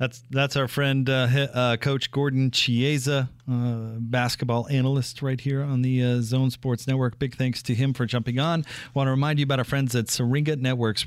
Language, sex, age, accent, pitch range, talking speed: English, male, 40-59, American, 120-140 Hz, 200 wpm